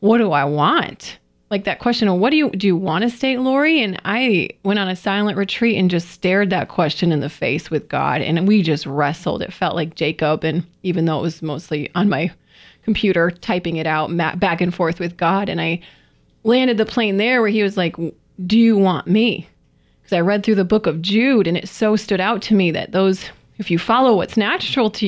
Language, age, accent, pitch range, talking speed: English, 30-49, American, 170-215 Hz, 230 wpm